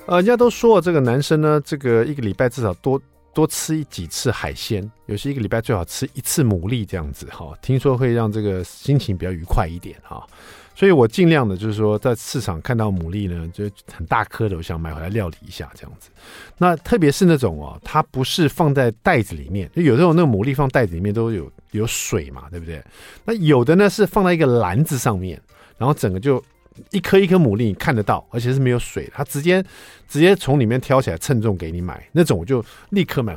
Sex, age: male, 50-69